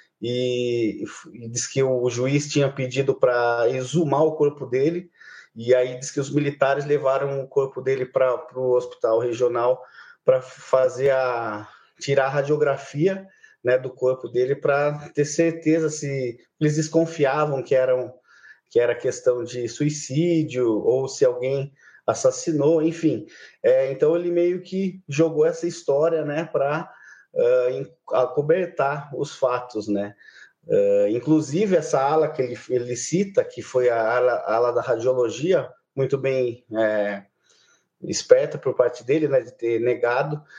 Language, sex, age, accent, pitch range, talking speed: Portuguese, male, 20-39, Brazilian, 130-165 Hz, 145 wpm